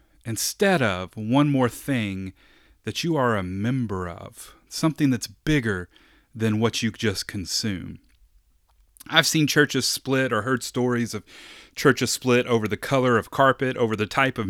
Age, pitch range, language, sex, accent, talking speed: 30-49, 110-150 Hz, English, male, American, 155 wpm